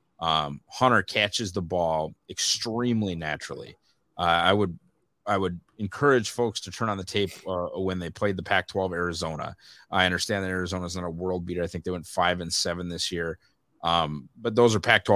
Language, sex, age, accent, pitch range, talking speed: English, male, 30-49, American, 90-110 Hz, 200 wpm